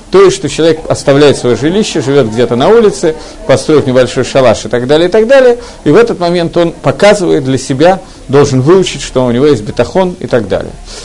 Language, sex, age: Russian, male, 50-69